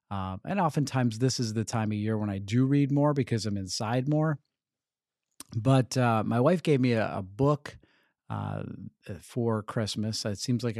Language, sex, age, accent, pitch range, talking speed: English, male, 40-59, American, 110-145 Hz, 190 wpm